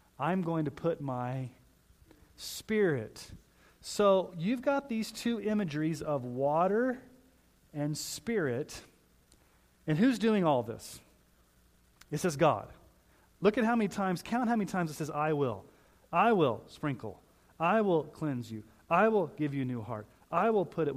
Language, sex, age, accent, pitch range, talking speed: English, male, 40-59, American, 120-185 Hz, 155 wpm